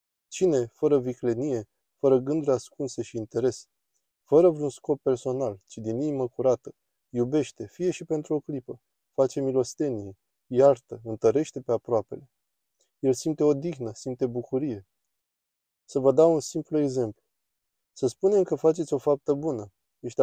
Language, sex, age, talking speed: Romanian, male, 20-39, 140 wpm